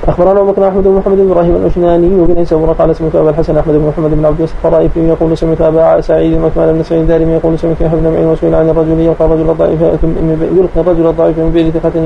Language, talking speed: Arabic, 230 wpm